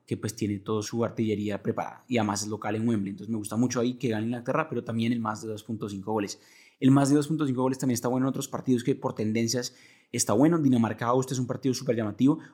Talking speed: 240 wpm